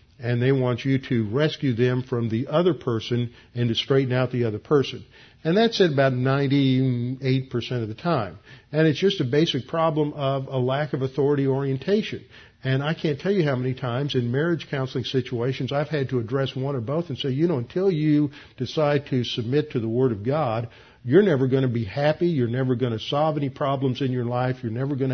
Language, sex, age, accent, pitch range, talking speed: English, male, 50-69, American, 120-145 Hz, 215 wpm